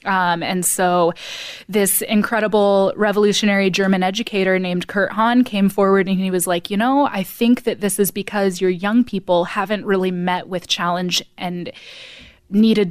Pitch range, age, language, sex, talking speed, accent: 180-205 Hz, 20-39, English, female, 165 wpm, American